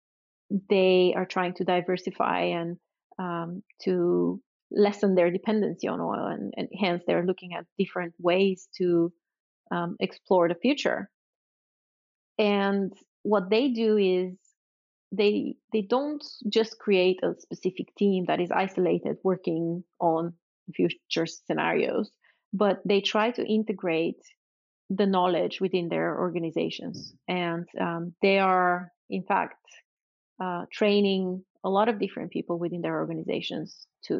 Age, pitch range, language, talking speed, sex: 30-49, 180-205 Hz, Bulgarian, 130 wpm, female